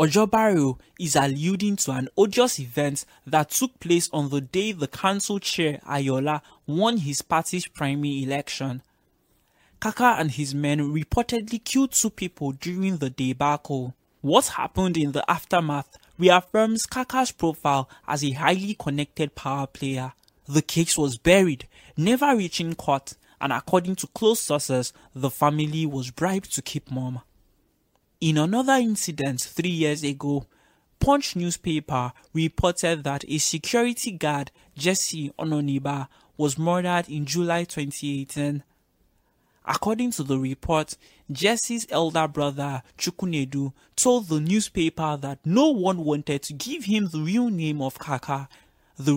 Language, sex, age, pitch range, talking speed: English, male, 20-39, 140-185 Hz, 135 wpm